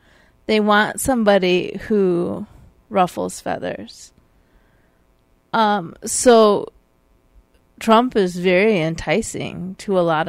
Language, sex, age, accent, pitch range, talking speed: English, female, 30-49, American, 140-215 Hz, 85 wpm